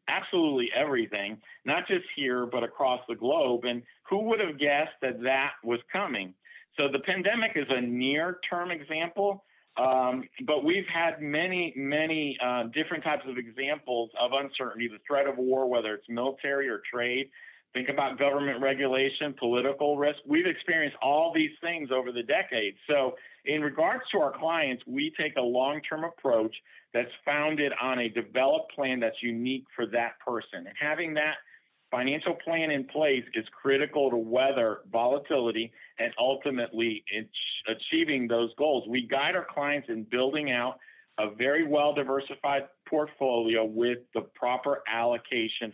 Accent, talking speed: American, 150 wpm